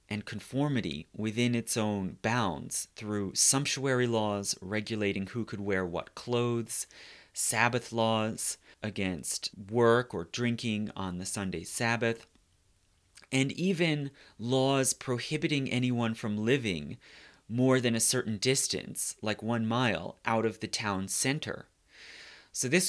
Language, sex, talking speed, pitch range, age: English, male, 125 wpm, 100-125 Hz, 30-49